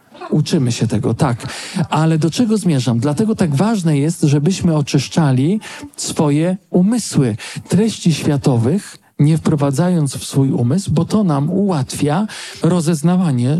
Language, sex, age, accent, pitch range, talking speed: Polish, male, 40-59, native, 140-175 Hz, 125 wpm